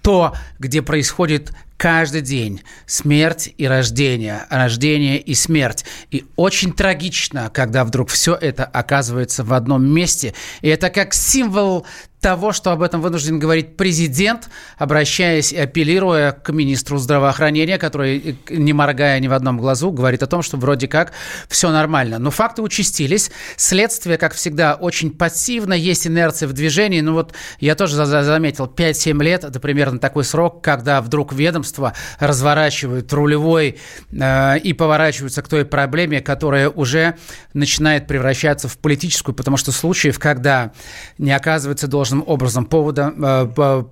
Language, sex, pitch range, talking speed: Russian, male, 135-160 Hz, 145 wpm